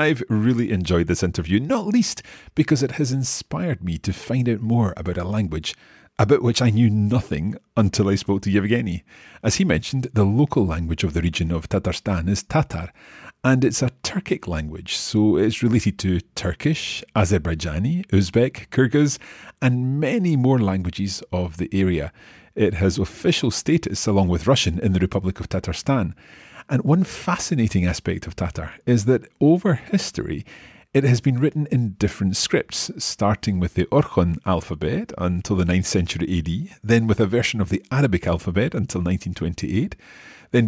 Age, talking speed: 40-59, 165 wpm